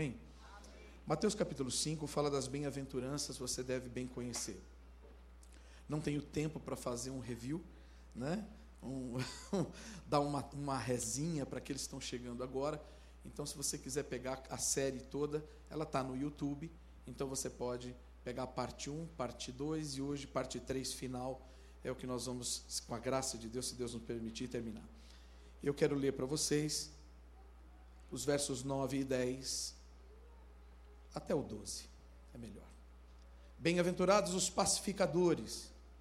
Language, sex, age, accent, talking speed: Portuguese, male, 50-69, Brazilian, 145 wpm